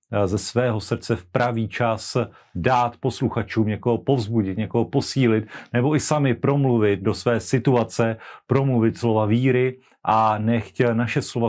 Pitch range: 105-120 Hz